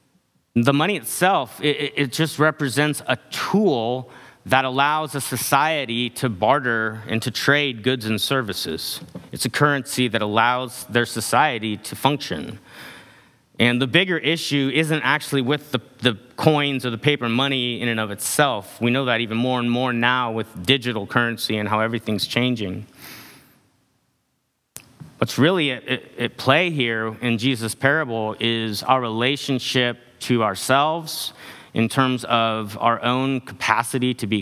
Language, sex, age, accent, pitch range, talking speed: English, male, 30-49, American, 115-135 Hz, 150 wpm